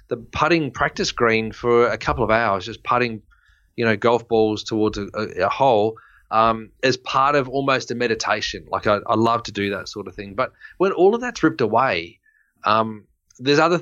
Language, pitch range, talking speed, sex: English, 105-130 Hz, 200 wpm, male